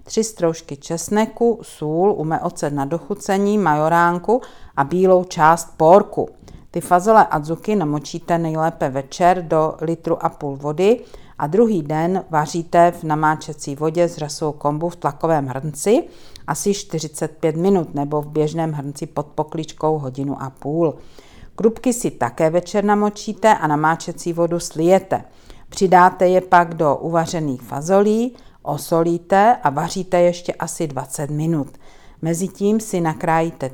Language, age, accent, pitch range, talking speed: Czech, 50-69, native, 155-190 Hz, 130 wpm